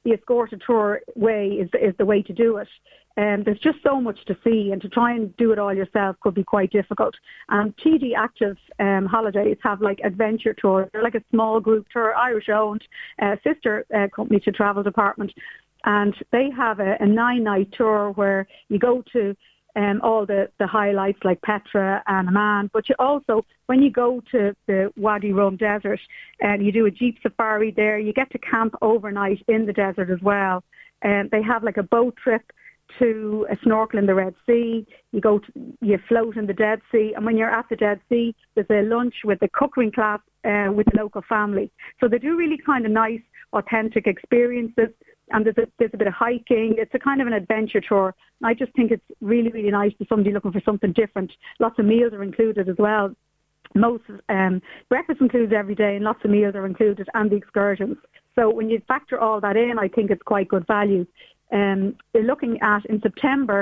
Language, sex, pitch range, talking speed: English, female, 205-230 Hz, 215 wpm